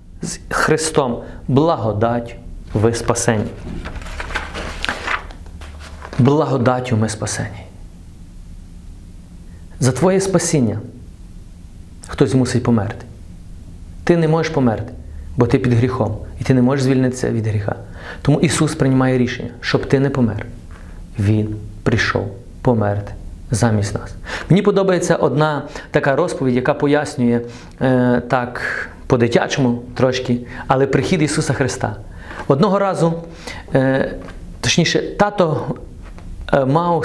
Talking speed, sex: 100 wpm, male